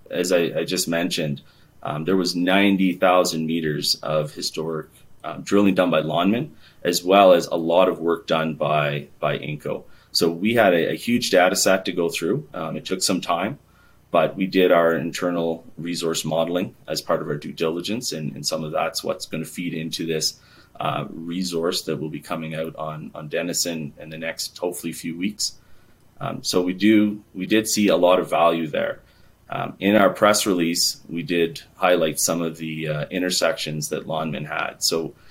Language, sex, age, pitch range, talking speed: English, male, 30-49, 80-95 Hz, 195 wpm